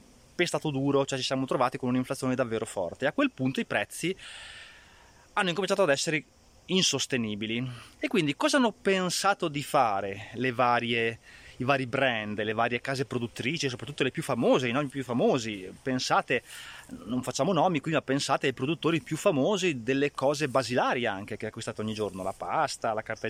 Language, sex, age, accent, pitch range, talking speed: Italian, male, 30-49, native, 125-190 Hz, 175 wpm